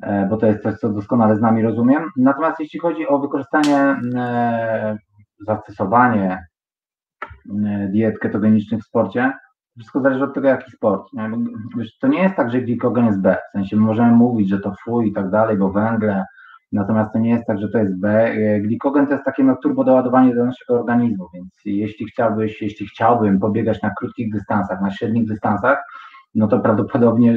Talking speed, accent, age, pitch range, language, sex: 185 wpm, native, 30-49, 105-125 Hz, Polish, male